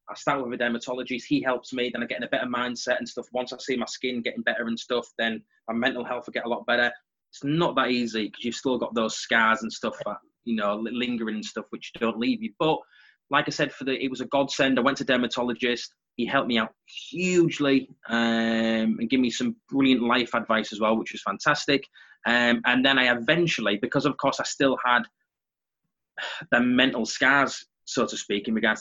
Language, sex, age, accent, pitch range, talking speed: English, male, 20-39, British, 115-130 Hz, 225 wpm